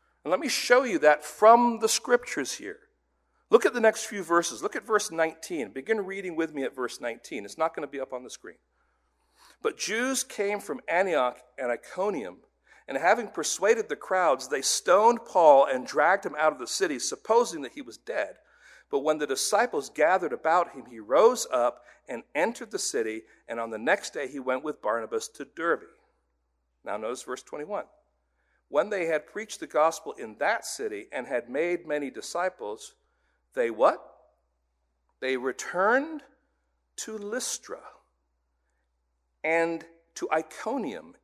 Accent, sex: American, male